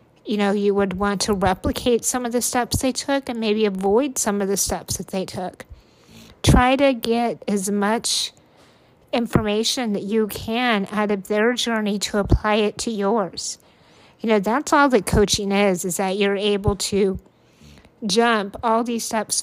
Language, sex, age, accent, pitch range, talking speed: English, female, 50-69, American, 200-235 Hz, 175 wpm